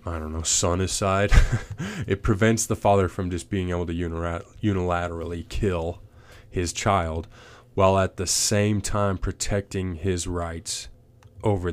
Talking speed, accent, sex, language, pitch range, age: 140 wpm, American, male, English, 90-110 Hz, 30-49